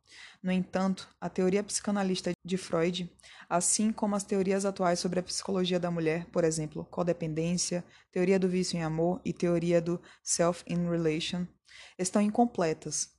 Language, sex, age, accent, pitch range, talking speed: Portuguese, female, 20-39, Brazilian, 180-205 Hz, 150 wpm